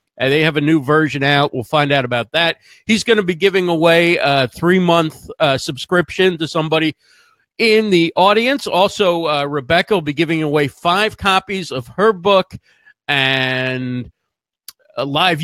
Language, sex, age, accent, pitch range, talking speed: English, male, 50-69, American, 150-195 Hz, 155 wpm